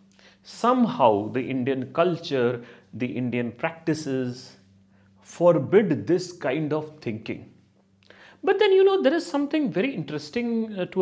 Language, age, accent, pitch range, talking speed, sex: English, 30-49, Indian, 115-180 Hz, 120 wpm, male